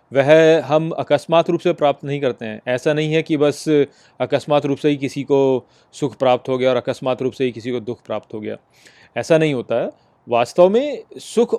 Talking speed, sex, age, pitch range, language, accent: 215 wpm, male, 30-49, 130-165 Hz, Hindi, native